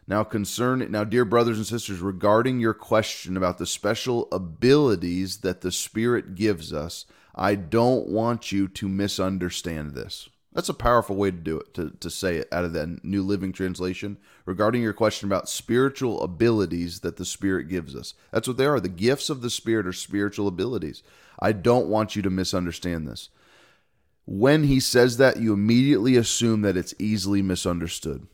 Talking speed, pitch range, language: 180 wpm, 90-110 Hz, English